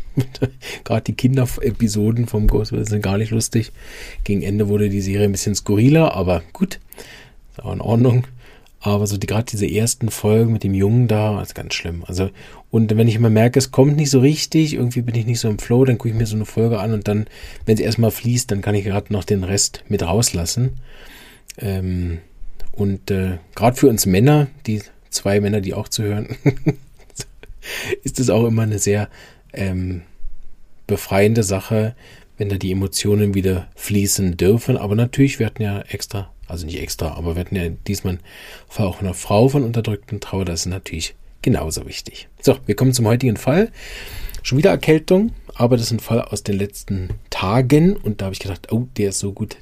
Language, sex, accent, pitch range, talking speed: German, male, German, 100-120 Hz, 195 wpm